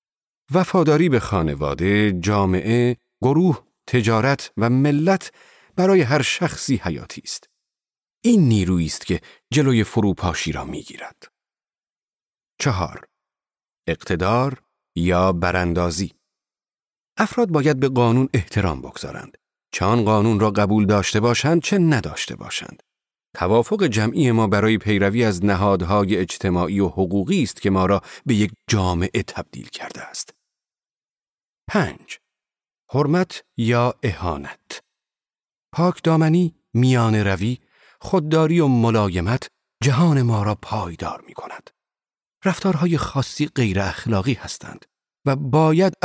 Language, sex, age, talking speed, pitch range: Persian, male, 40-59, 110 wpm, 100-145 Hz